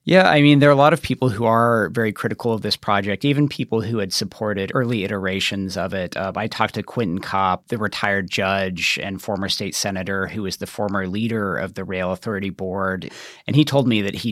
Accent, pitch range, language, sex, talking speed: American, 95-110 Hz, English, male, 225 wpm